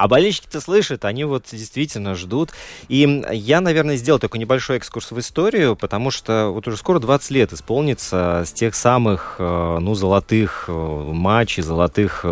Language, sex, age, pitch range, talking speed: Russian, male, 20-39, 95-135 Hz, 150 wpm